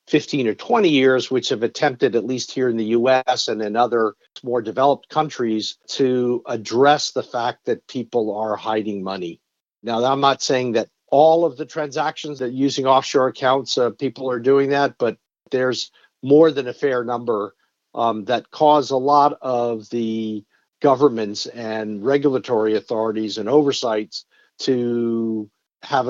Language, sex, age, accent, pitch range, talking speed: English, male, 50-69, American, 110-135 Hz, 155 wpm